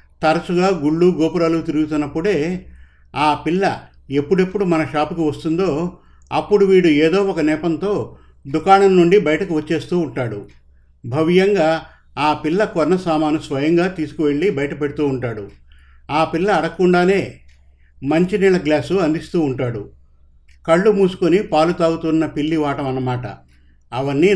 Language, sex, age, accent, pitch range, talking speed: Telugu, male, 50-69, native, 130-170 Hz, 110 wpm